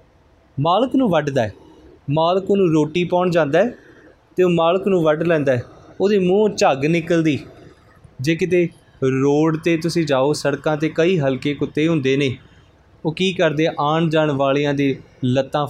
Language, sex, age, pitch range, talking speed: Punjabi, male, 20-39, 130-170 Hz, 160 wpm